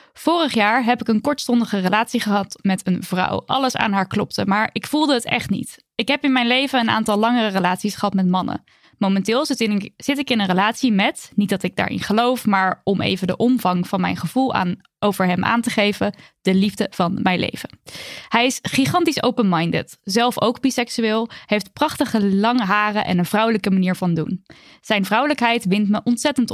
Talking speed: 195 wpm